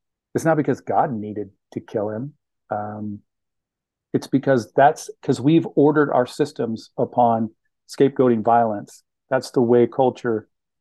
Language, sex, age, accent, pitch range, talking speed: English, male, 40-59, American, 110-125 Hz, 135 wpm